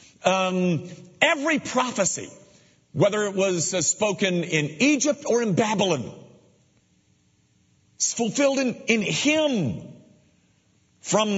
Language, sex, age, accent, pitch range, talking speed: English, male, 50-69, American, 160-235 Hz, 95 wpm